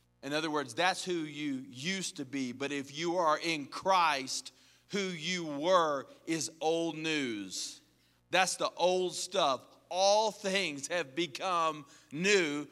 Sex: male